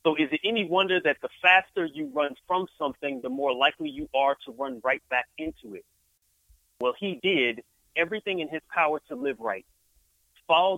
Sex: male